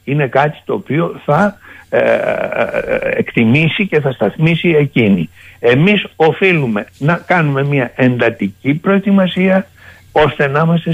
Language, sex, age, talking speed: Greek, male, 60-79, 110 wpm